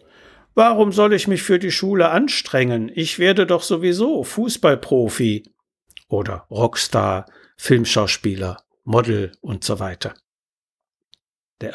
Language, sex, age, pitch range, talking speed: German, male, 60-79, 115-175 Hz, 105 wpm